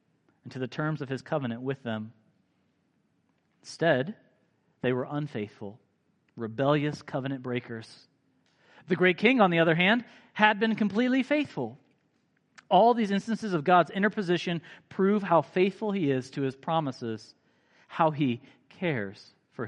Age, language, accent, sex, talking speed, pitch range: 40-59, English, American, male, 135 wpm, 120-165 Hz